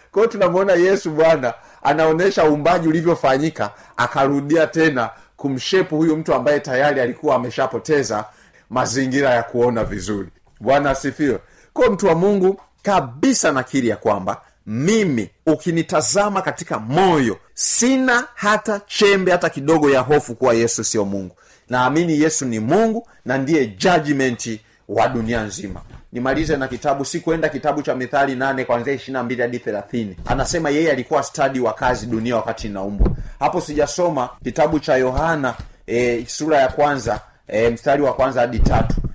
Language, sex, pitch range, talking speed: Swahili, male, 120-160 Hz, 140 wpm